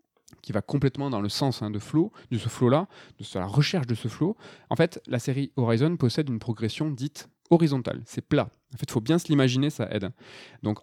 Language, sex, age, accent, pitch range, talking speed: French, male, 20-39, French, 110-150 Hz, 215 wpm